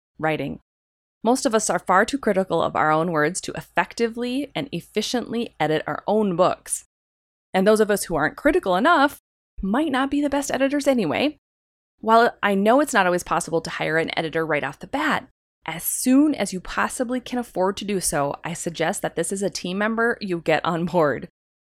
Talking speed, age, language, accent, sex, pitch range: 200 wpm, 20-39, English, American, female, 160-240 Hz